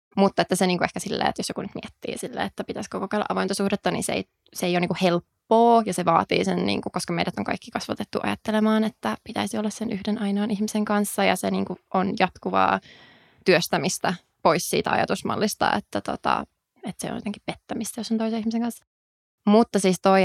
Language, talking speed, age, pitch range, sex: Finnish, 200 wpm, 20-39, 180-215 Hz, female